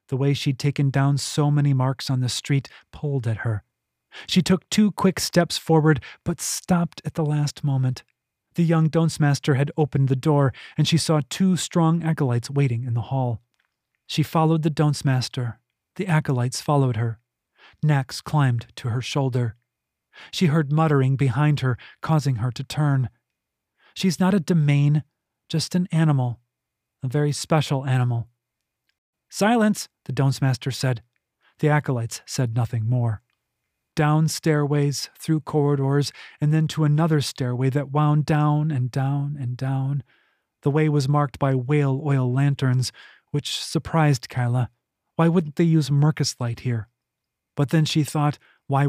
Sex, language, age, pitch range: male, English, 30-49, 125-155 Hz